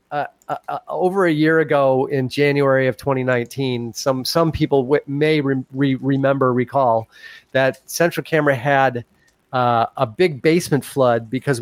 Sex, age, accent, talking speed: male, 30-49, American, 145 wpm